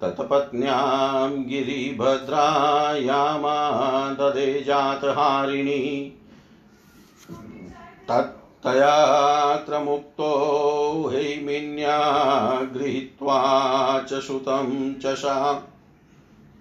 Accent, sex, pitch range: native, male, 130-145 Hz